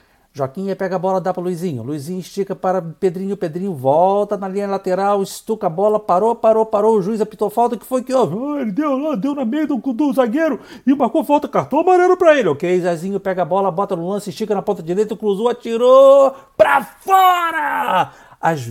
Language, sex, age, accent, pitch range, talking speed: Portuguese, male, 60-79, Brazilian, 135-220 Hz, 205 wpm